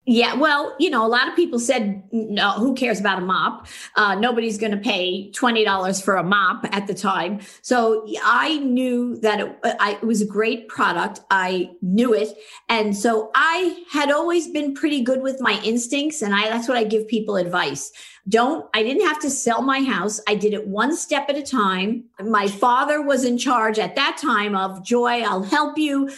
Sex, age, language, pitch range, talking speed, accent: female, 50-69, English, 210-265 Hz, 205 wpm, American